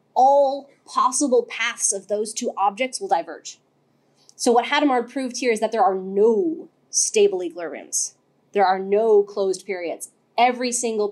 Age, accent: 20-39, American